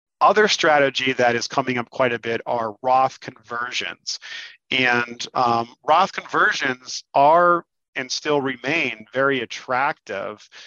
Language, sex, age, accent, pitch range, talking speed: English, male, 40-59, American, 115-135 Hz, 125 wpm